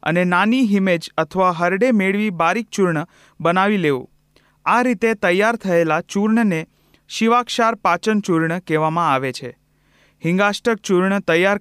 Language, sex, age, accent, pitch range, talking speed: Hindi, male, 30-49, native, 170-220 Hz, 115 wpm